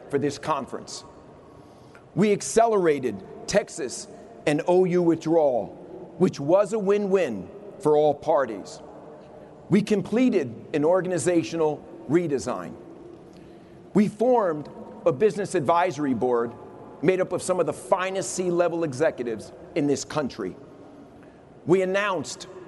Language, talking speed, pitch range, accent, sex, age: English, 110 wpm, 160-200 Hz, American, male, 40-59